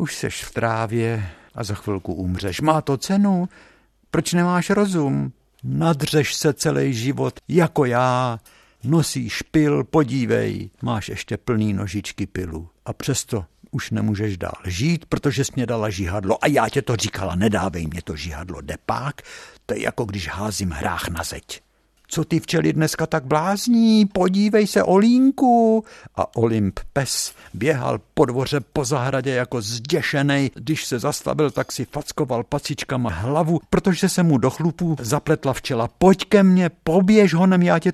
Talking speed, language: 155 wpm, Czech